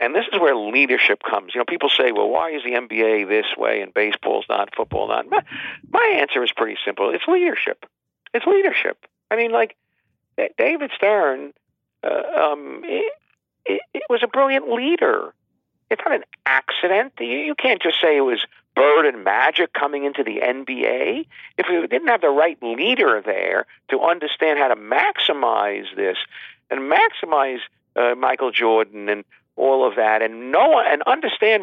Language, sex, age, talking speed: English, male, 50-69, 175 wpm